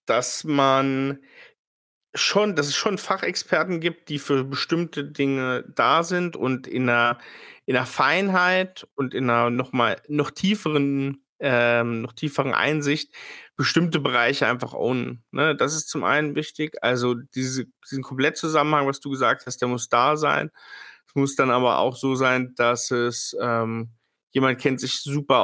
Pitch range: 120-145 Hz